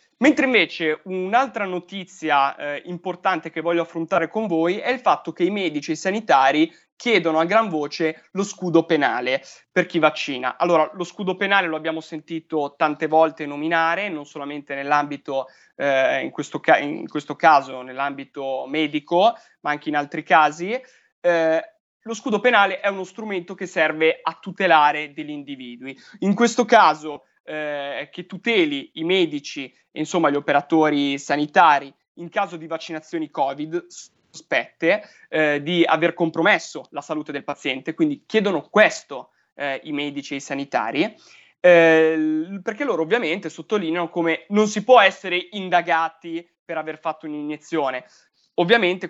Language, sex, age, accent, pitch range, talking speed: Italian, male, 20-39, native, 150-200 Hz, 150 wpm